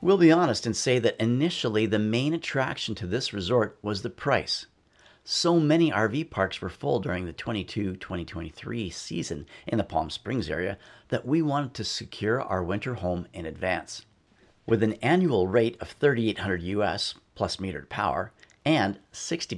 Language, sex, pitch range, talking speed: English, male, 105-145 Hz, 160 wpm